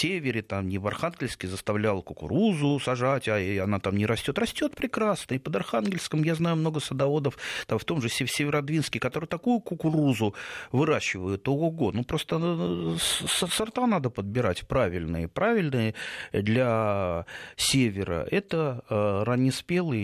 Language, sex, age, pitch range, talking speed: Russian, male, 30-49, 105-155 Hz, 140 wpm